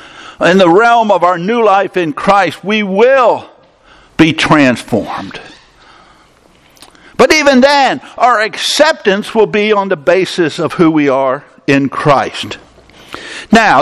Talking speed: 130 wpm